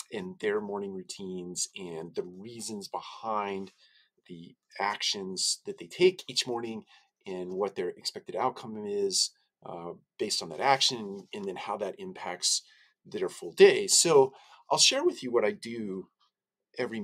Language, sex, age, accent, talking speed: English, male, 40-59, American, 150 wpm